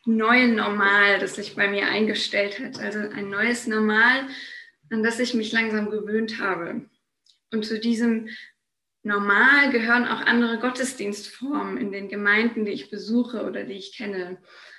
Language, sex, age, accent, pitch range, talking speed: German, female, 20-39, German, 210-245 Hz, 150 wpm